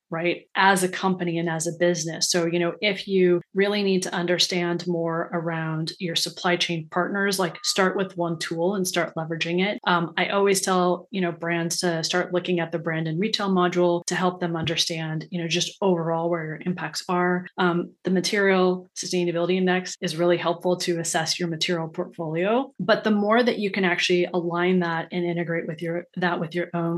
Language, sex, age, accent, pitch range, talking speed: English, female, 30-49, American, 165-180 Hz, 200 wpm